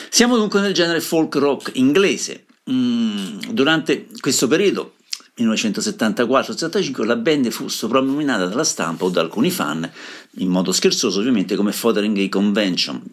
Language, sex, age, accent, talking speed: Italian, male, 50-69, native, 140 wpm